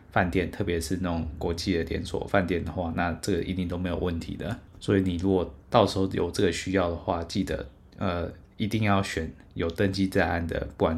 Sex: male